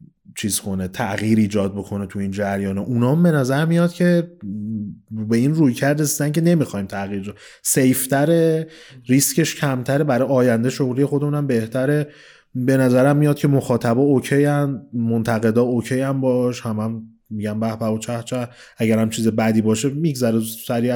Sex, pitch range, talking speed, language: male, 110-145 Hz, 160 wpm, Persian